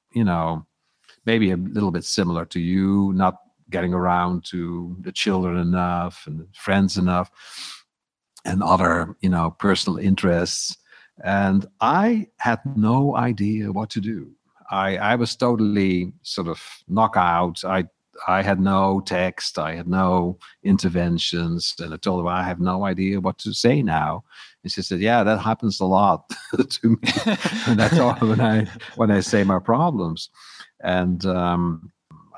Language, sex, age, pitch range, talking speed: English, male, 50-69, 90-115 Hz, 155 wpm